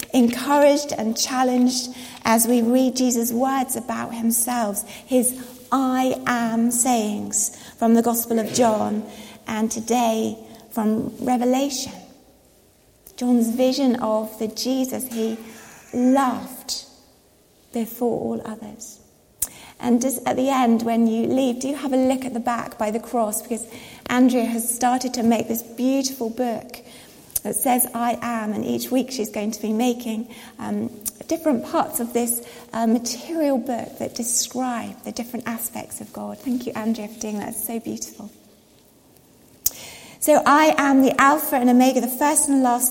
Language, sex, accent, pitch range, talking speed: English, female, British, 230-260 Hz, 150 wpm